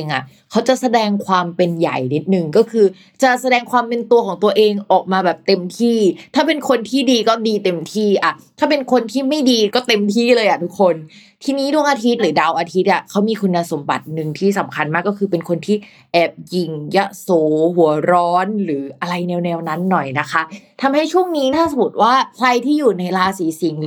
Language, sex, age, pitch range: Thai, female, 20-39, 175-230 Hz